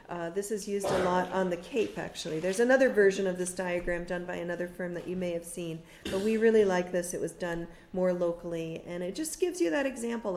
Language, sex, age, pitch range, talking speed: English, female, 40-59, 165-195 Hz, 245 wpm